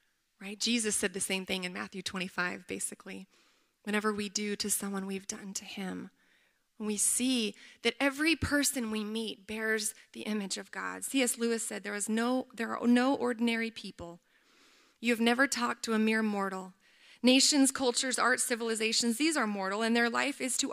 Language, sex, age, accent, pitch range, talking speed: English, female, 20-39, American, 210-255 Hz, 180 wpm